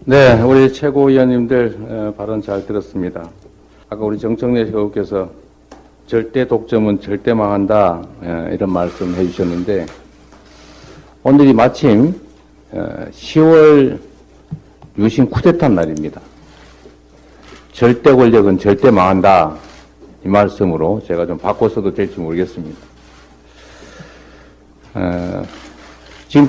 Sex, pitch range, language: male, 85-120 Hz, English